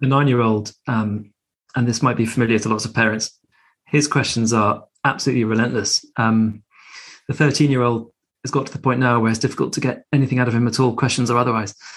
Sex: male